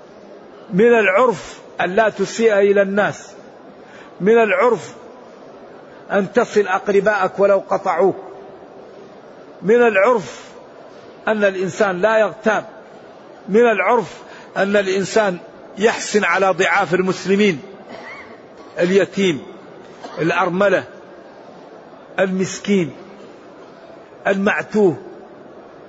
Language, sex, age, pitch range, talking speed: Arabic, male, 50-69, 185-220 Hz, 75 wpm